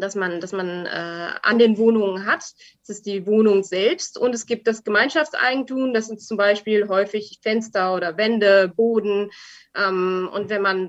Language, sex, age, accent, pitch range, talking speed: German, female, 20-39, German, 195-230 Hz, 175 wpm